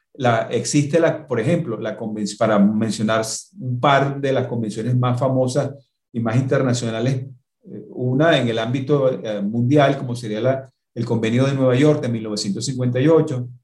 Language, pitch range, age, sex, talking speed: Spanish, 115-145 Hz, 40-59, male, 150 wpm